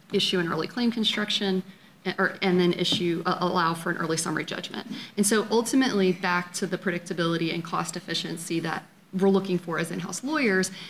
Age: 30-49